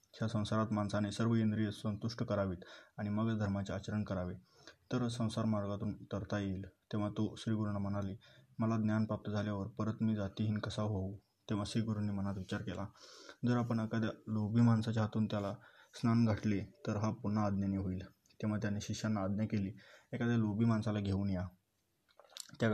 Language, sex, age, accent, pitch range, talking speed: Marathi, male, 20-39, native, 100-115 Hz, 160 wpm